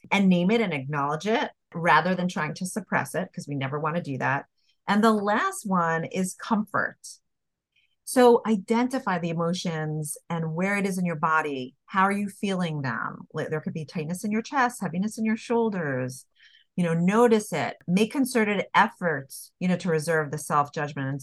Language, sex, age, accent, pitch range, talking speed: English, female, 40-59, American, 155-215 Hz, 185 wpm